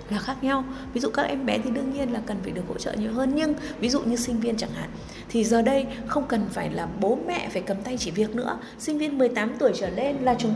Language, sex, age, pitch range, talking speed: Vietnamese, female, 20-39, 190-255 Hz, 285 wpm